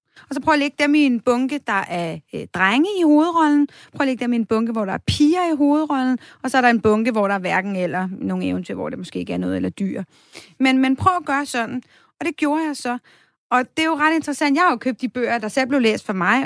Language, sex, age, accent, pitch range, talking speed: Danish, female, 30-49, native, 230-295 Hz, 285 wpm